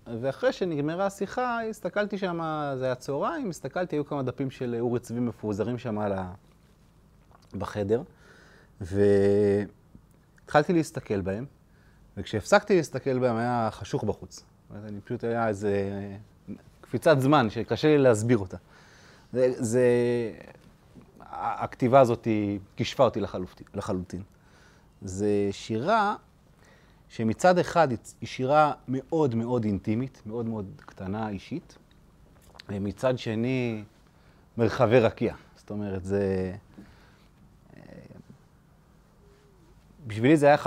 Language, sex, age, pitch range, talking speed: Hebrew, male, 30-49, 105-135 Hz, 100 wpm